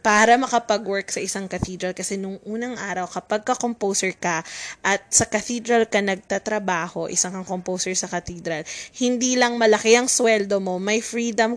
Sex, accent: female, native